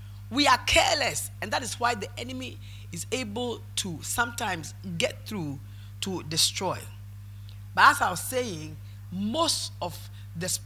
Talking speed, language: 140 wpm, English